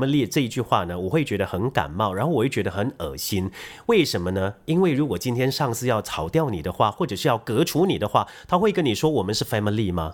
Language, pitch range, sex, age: Chinese, 105-160 Hz, male, 30-49